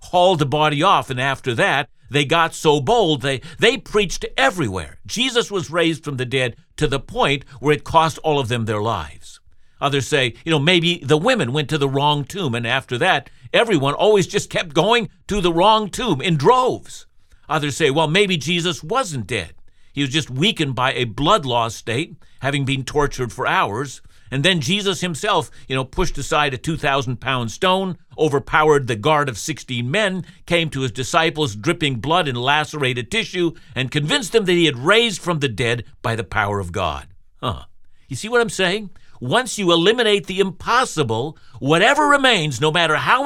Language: English